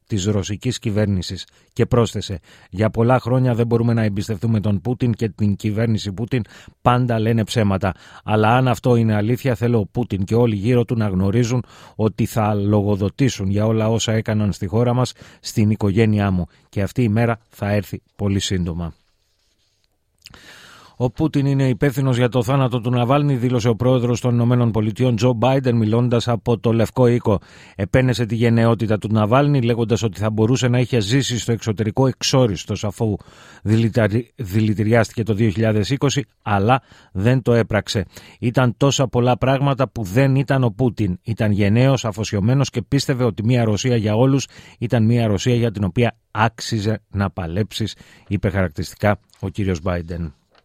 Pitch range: 105-125 Hz